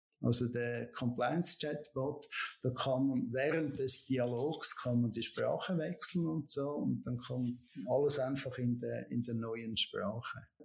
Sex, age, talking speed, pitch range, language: male, 60-79, 160 wpm, 120-150 Hz, English